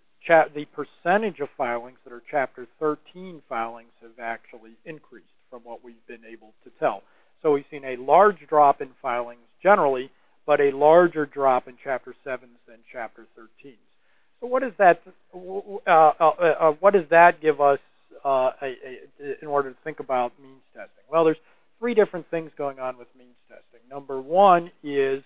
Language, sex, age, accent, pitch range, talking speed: English, male, 40-59, American, 130-165 Hz, 155 wpm